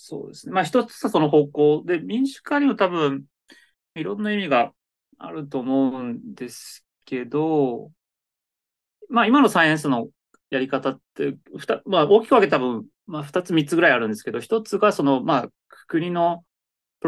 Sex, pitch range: male, 125-190 Hz